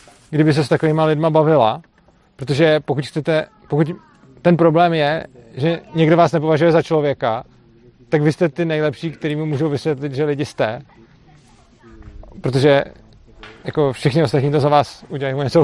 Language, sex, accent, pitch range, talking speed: Czech, male, native, 125-155 Hz, 150 wpm